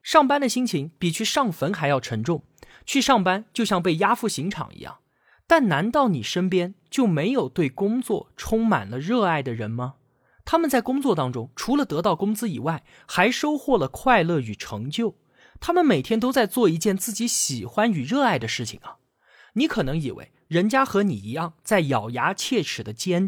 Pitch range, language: 140-225 Hz, Chinese